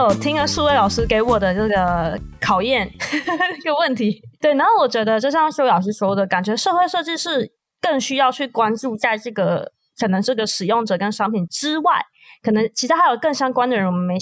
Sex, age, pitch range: female, 20-39, 200-295 Hz